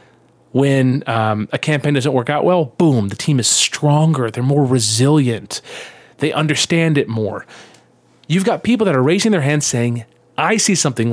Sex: male